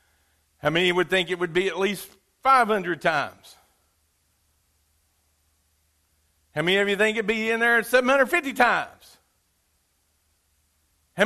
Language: English